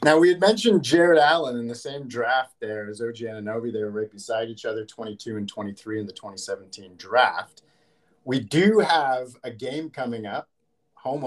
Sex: male